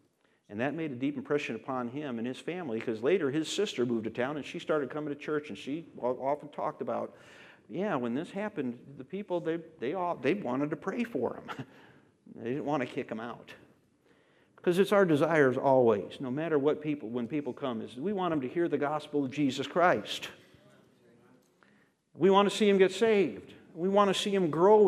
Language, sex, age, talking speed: English, male, 50-69, 200 wpm